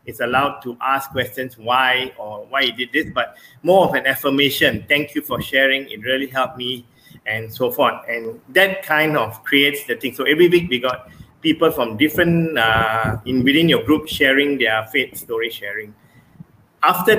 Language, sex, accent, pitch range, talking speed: English, male, Malaysian, 125-150 Hz, 185 wpm